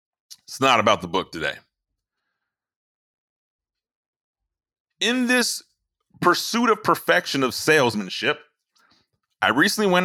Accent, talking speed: American, 95 wpm